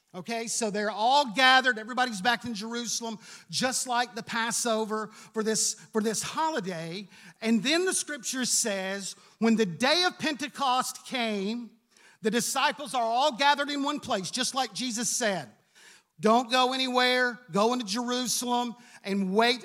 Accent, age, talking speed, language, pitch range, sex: American, 50-69, 150 wpm, English, 215-265 Hz, male